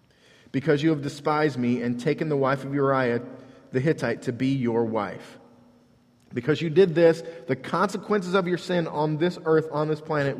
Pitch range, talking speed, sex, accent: 115-150 Hz, 185 wpm, male, American